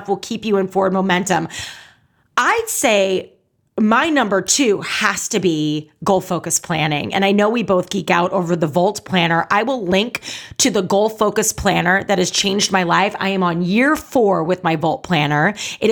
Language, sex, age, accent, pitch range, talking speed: English, female, 30-49, American, 175-210 Hz, 185 wpm